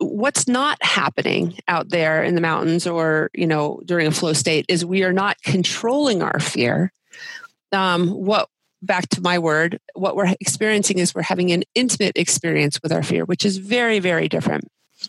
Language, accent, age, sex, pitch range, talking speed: English, American, 40-59, female, 175-225 Hz, 180 wpm